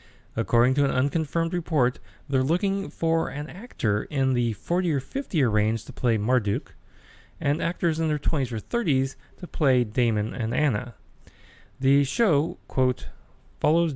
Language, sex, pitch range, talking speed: English, male, 110-150 Hz, 155 wpm